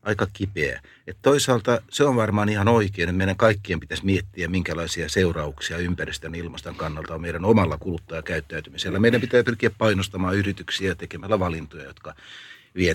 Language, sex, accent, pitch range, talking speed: Finnish, male, native, 90-115 Hz, 150 wpm